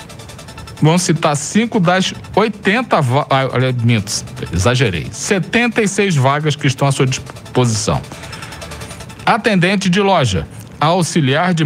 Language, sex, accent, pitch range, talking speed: Portuguese, male, Brazilian, 120-155 Hz, 115 wpm